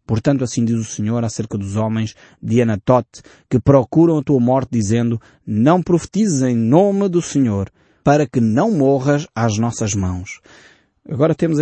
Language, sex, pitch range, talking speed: Portuguese, male, 110-155 Hz, 160 wpm